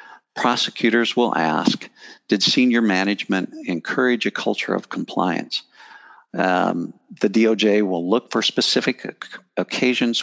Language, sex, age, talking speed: English, male, 50-69, 110 wpm